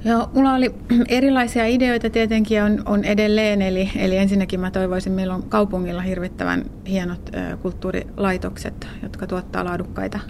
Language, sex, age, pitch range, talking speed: Finnish, female, 30-49, 175-200 Hz, 140 wpm